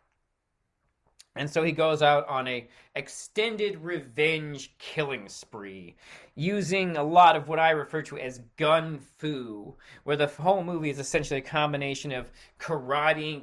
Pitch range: 120-155 Hz